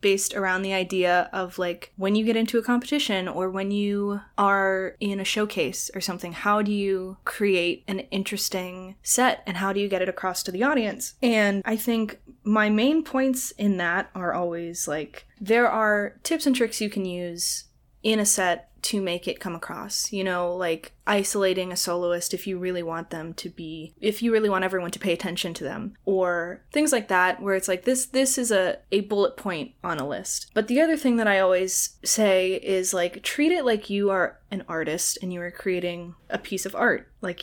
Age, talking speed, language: 10-29, 210 wpm, English